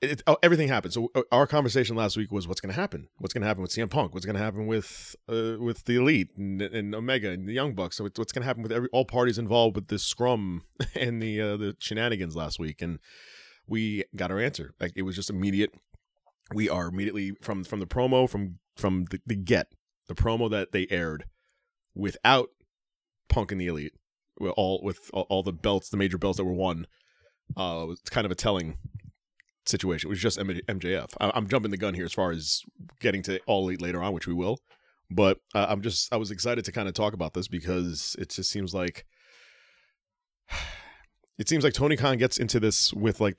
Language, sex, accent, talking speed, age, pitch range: English, male, American, 215 wpm, 30-49, 90-115 Hz